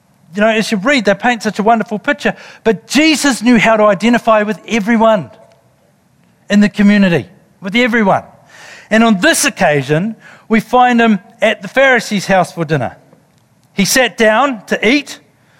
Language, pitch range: English, 170-235 Hz